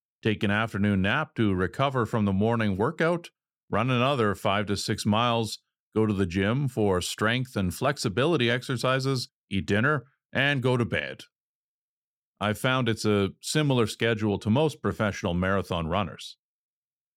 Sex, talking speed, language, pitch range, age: male, 145 wpm, English, 100-130 Hz, 50-69